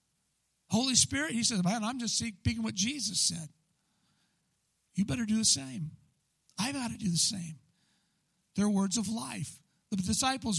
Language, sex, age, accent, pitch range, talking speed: English, male, 50-69, American, 165-225 Hz, 160 wpm